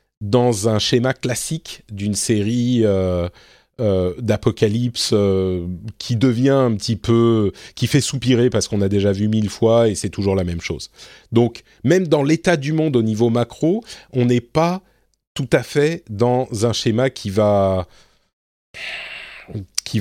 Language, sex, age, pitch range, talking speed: French, male, 30-49, 100-135 Hz, 155 wpm